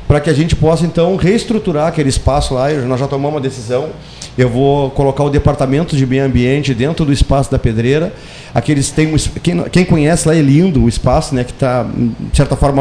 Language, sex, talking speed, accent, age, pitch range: Portuguese, male, 200 wpm, Brazilian, 40-59, 130-155 Hz